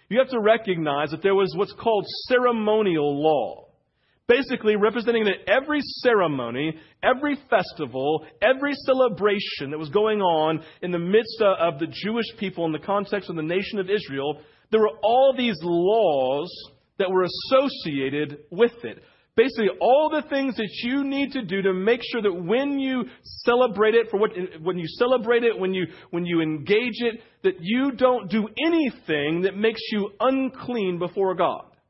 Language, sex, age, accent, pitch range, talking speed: English, male, 40-59, American, 185-245 Hz, 165 wpm